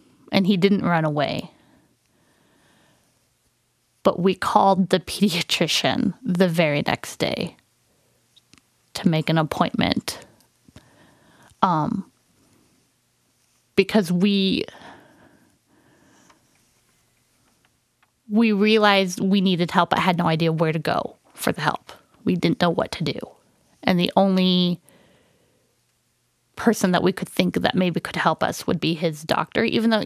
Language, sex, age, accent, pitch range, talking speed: English, female, 20-39, American, 170-200 Hz, 120 wpm